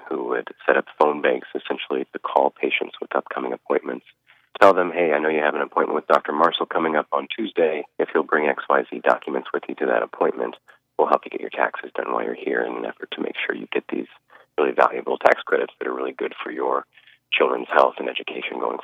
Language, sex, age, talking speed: English, male, 30-49, 235 wpm